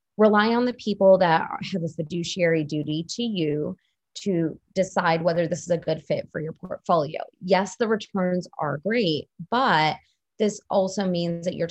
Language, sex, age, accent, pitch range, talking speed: English, female, 20-39, American, 160-195 Hz, 170 wpm